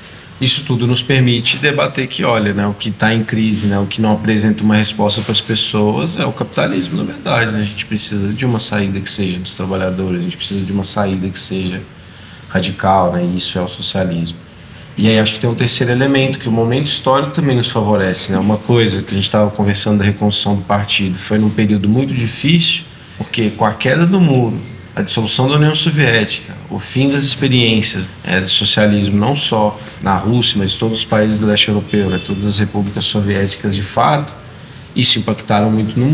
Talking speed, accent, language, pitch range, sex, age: 210 wpm, Brazilian, Portuguese, 100-120 Hz, male, 20-39